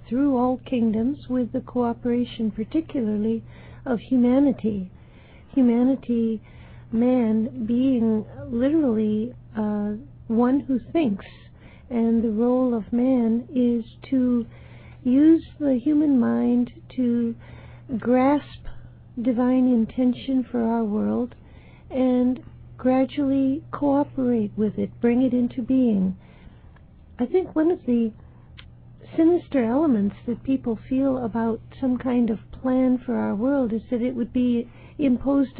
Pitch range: 225-255 Hz